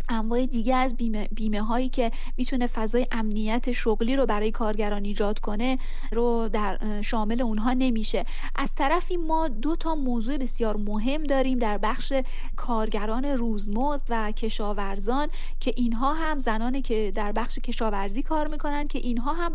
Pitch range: 220-270 Hz